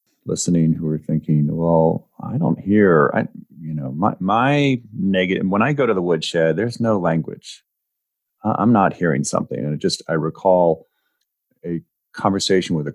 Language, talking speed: English, 160 wpm